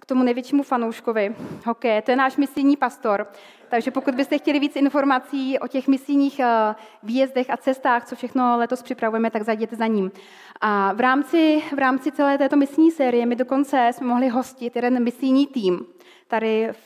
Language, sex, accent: Czech, female, native